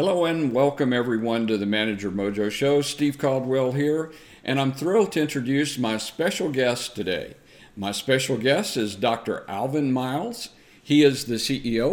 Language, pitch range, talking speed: English, 110-135 Hz, 160 wpm